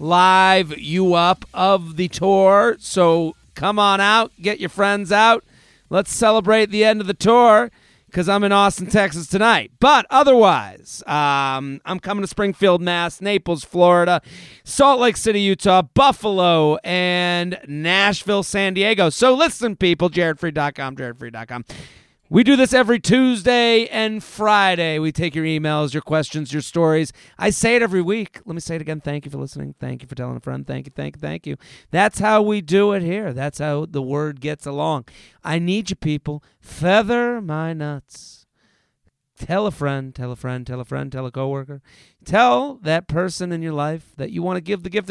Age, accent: 40-59, American